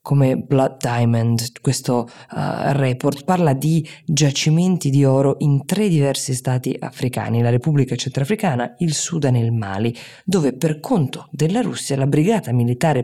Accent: native